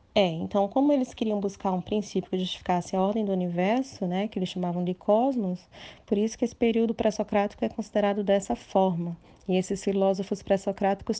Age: 20-39